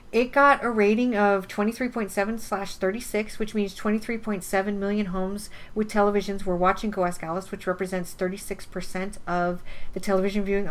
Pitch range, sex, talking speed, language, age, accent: 180-215 Hz, female, 150 wpm, English, 40-59, American